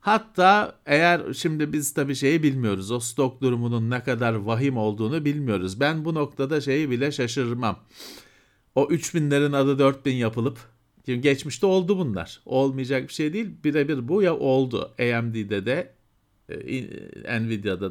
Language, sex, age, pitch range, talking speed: Turkish, male, 50-69, 120-175 Hz, 135 wpm